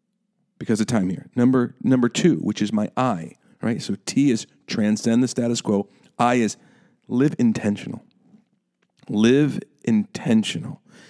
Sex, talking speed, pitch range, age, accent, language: male, 135 wpm, 110-150 Hz, 50-69, American, English